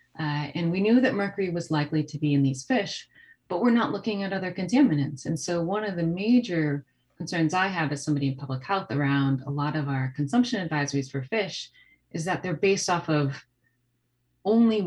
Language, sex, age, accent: English, female, 30-49, American